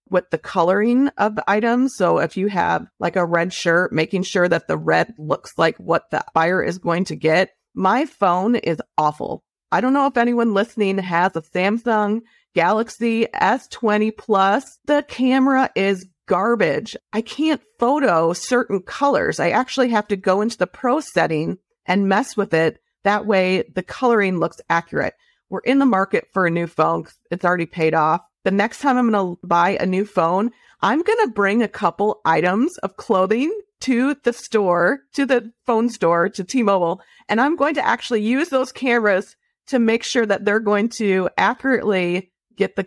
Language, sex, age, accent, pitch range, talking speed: English, female, 40-59, American, 180-235 Hz, 180 wpm